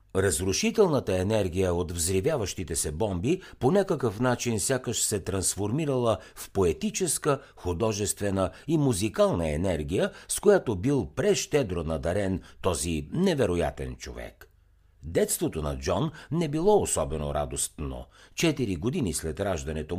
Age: 60-79